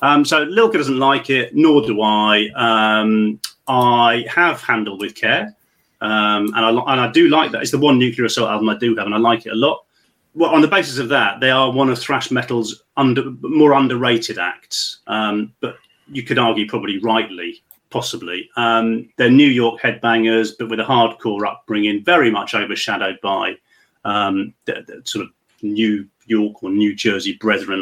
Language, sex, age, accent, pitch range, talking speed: English, male, 30-49, British, 110-135 Hz, 190 wpm